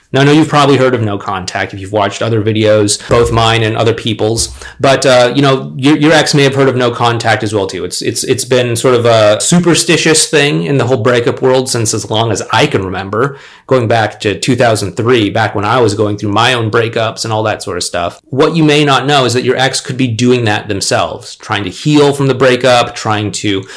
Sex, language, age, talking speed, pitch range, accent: male, English, 30-49, 245 wpm, 110-140 Hz, American